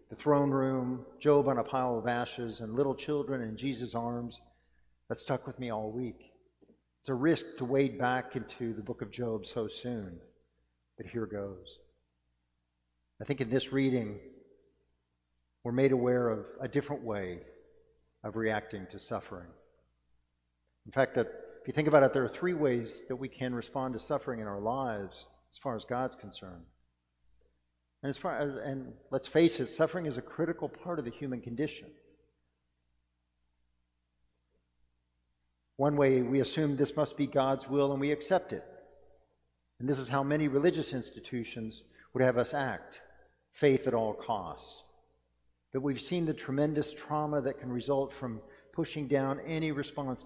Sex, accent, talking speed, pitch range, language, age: male, American, 160 wpm, 90-140 Hz, English, 50-69